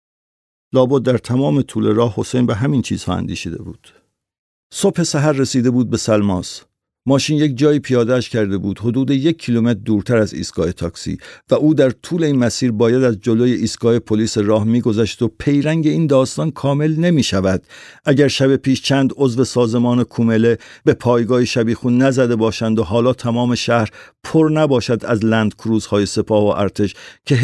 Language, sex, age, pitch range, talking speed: Persian, male, 50-69, 110-135 Hz, 165 wpm